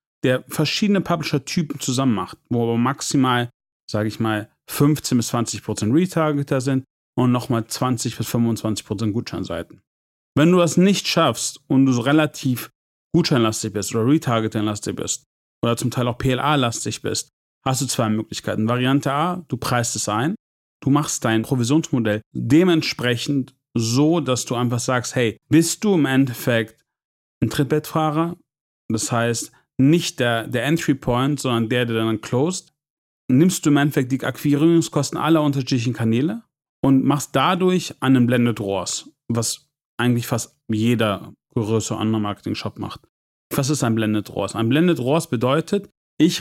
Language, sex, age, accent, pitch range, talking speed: German, male, 40-59, German, 115-150 Hz, 150 wpm